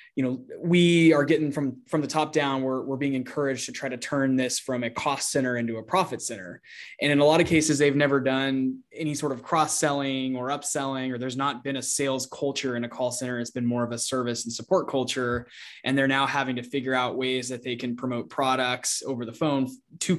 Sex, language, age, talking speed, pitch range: male, English, 20-39, 235 wpm, 125-145 Hz